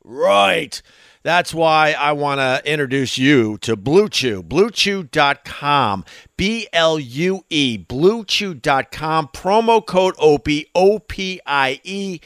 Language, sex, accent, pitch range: English, male, American, 130-190 Hz